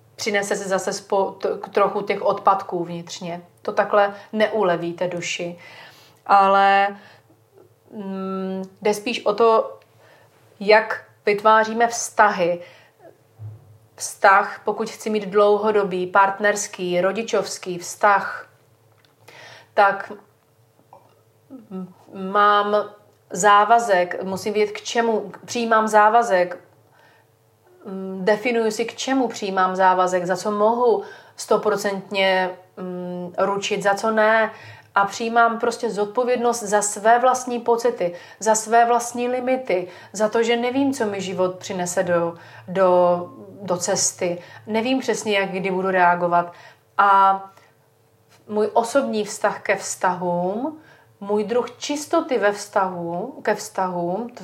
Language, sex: Slovak, female